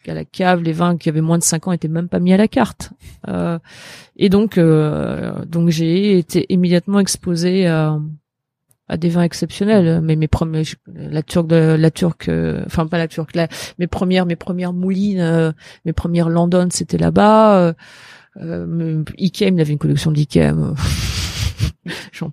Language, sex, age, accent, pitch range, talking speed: French, female, 30-49, French, 155-185 Hz, 170 wpm